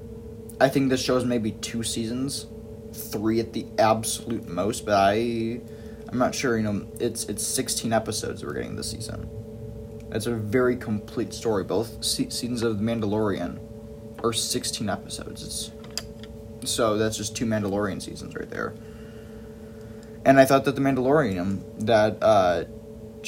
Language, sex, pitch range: English, male, 110-115 Hz